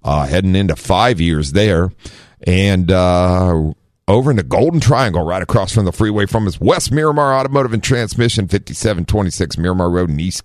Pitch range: 80-110 Hz